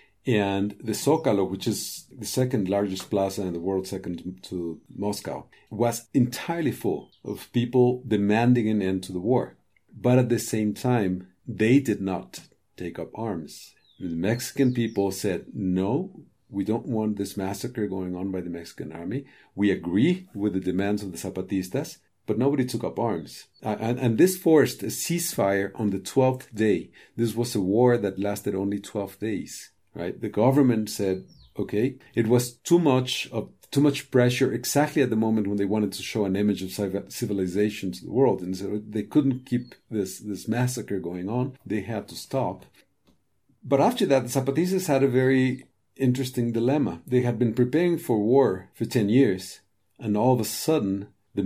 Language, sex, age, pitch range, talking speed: English, male, 50-69, 100-125 Hz, 180 wpm